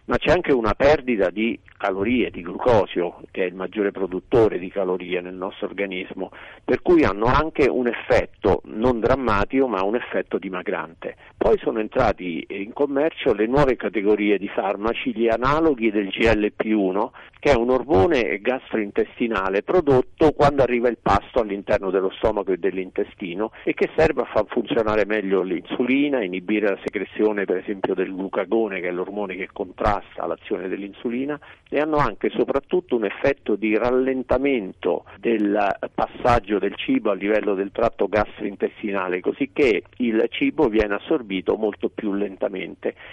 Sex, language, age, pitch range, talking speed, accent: male, Italian, 50-69, 100-130 Hz, 150 wpm, native